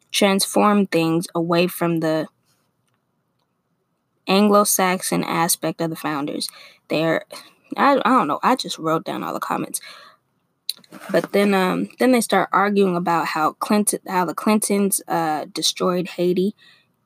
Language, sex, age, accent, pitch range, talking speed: English, female, 20-39, American, 165-215 Hz, 135 wpm